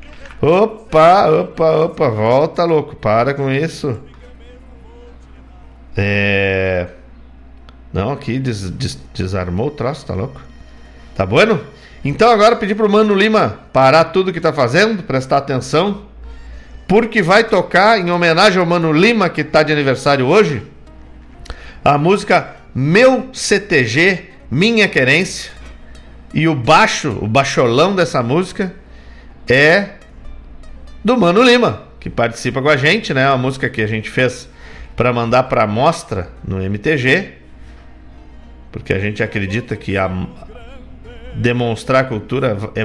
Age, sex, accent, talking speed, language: 50-69, male, Brazilian, 130 wpm, Portuguese